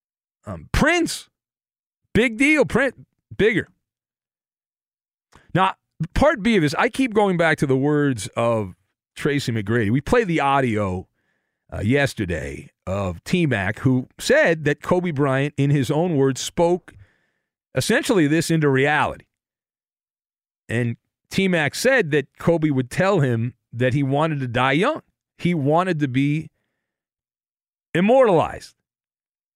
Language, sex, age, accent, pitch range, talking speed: English, male, 40-59, American, 115-165 Hz, 125 wpm